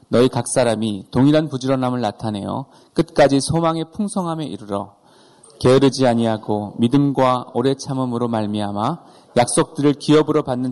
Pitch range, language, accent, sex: 120-155 Hz, Korean, native, male